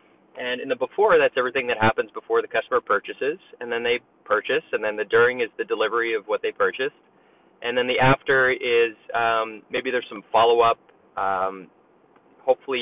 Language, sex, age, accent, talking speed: English, male, 20-39, American, 180 wpm